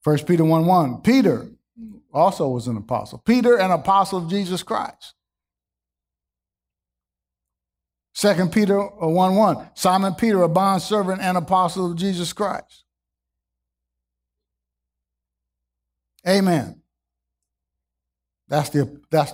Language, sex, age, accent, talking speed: English, male, 50-69, American, 100 wpm